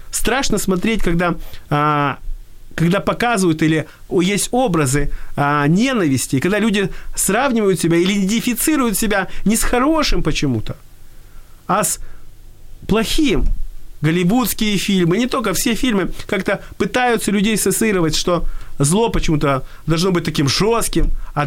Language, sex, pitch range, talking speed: Ukrainian, male, 145-210 Hz, 115 wpm